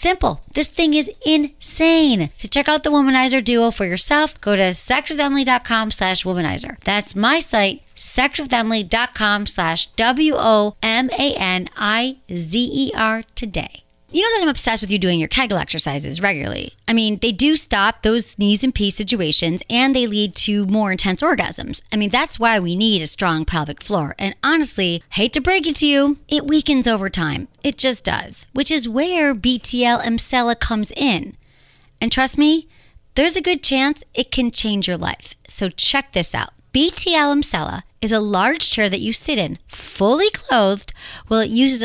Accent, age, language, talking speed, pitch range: American, 40-59, English, 165 wpm, 200-280 Hz